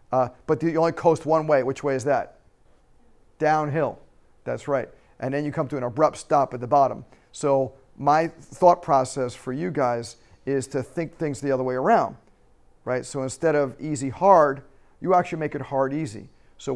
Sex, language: male, English